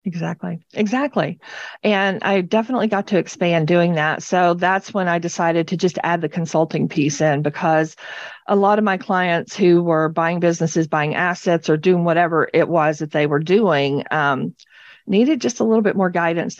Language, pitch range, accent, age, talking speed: English, 165-200 Hz, American, 40-59, 185 wpm